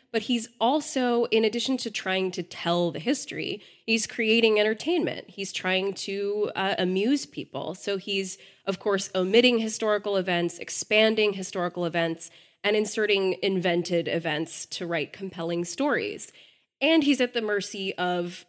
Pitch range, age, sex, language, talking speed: 170-215 Hz, 20-39, female, English, 145 wpm